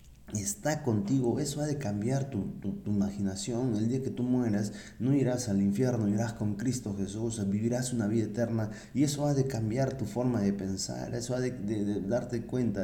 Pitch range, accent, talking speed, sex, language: 85-110 Hz, Mexican, 200 wpm, male, Spanish